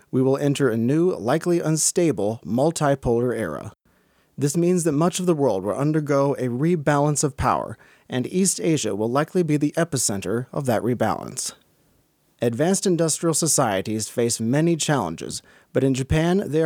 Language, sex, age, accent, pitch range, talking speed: English, male, 30-49, American, 125-160 Hz, 155 wpm